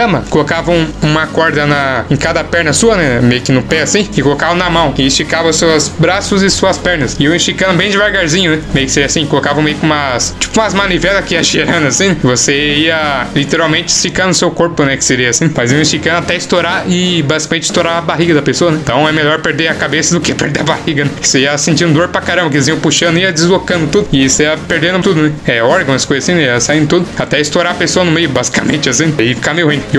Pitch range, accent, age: 140-170 Hz, Brazilian, 20-39